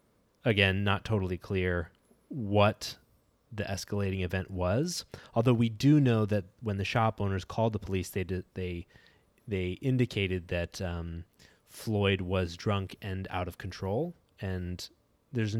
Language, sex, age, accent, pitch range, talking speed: English, male, 20-39, American, 90-110 Hz, 140 wpm